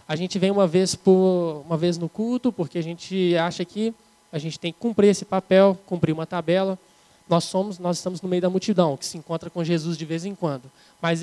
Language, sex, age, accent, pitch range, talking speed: Portuguese, male, 20-39, Brazilian, 165-190 Hz, 230 wpm